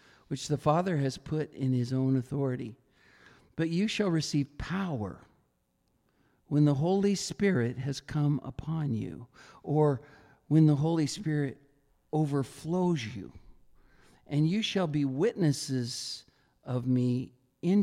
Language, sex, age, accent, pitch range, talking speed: English, male, 60-79, American, 135-165 Hz, 125 wpm